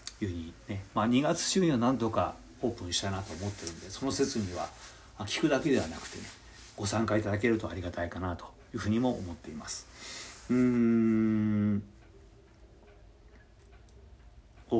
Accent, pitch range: native, 95-125 Hz